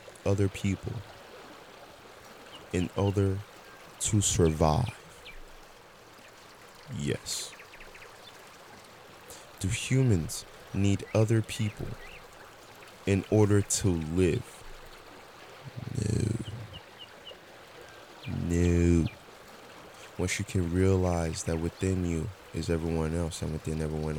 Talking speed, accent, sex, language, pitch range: 75 wpm, American, male, English, 80-110 Hz